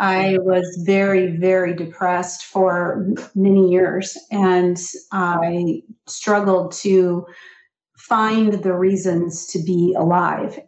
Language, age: English, 40-59